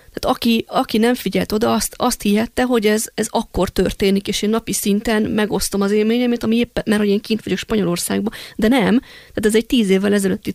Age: 30-49